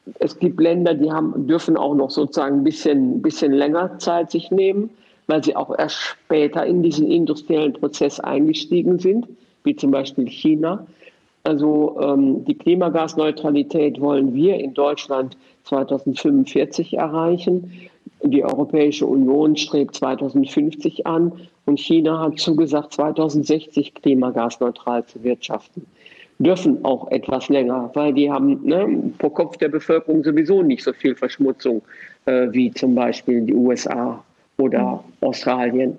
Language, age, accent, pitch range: German, 50-69, German, 145-180 Hz